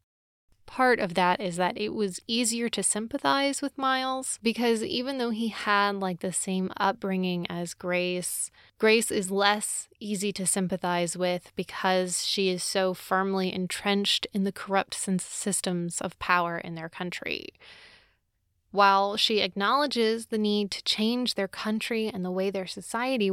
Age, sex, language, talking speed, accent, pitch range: 20-39, female, English, 150 wpm, American, 180-215 Hz